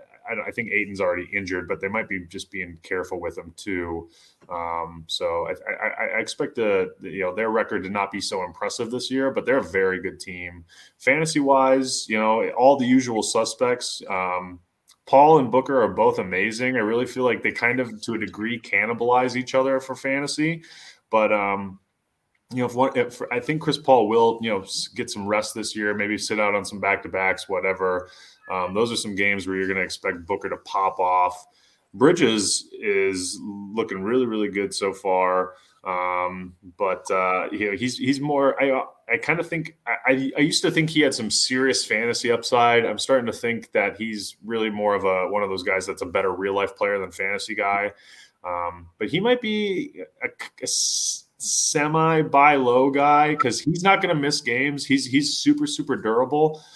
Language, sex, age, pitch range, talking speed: English, male, 20-39, 95-150 Hz, 200 wpm